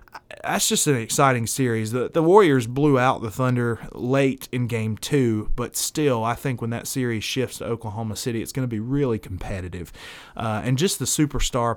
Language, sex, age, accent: English, male, 30-49, American